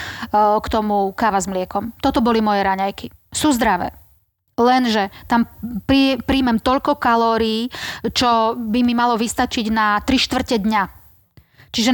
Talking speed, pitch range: 130 wpm, 220-255 Hz